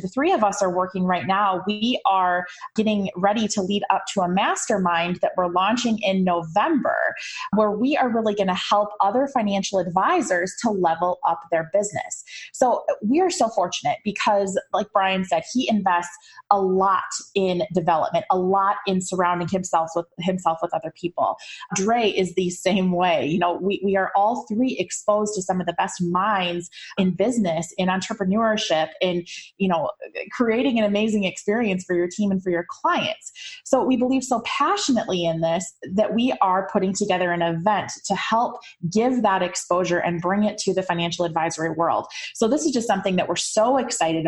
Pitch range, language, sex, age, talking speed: 180-220 Hz, English, female, 20-39, 185 wpm